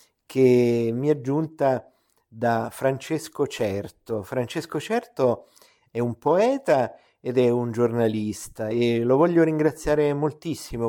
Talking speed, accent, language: 115 wpm, native, Italian